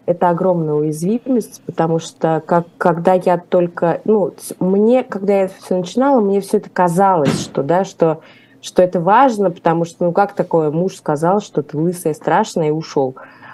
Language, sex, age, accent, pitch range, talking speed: Russian, female, 20-39, native, 155-190 Hz, 175 wpm